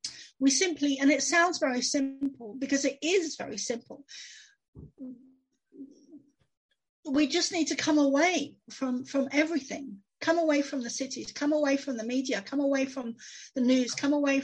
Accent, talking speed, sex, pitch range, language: British, 160 wpm, female, 235-300 Hz, English